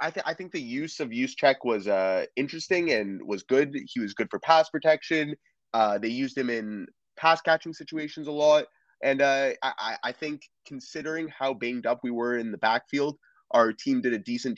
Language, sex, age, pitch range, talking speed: English, male, 20-39, 110-150 Hz, 195 wpm